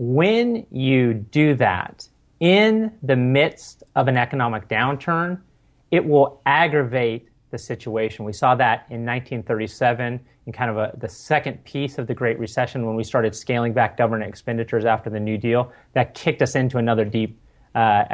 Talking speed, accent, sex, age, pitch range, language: 165 wpm, American, male, 30-49, 110-140 Hz, English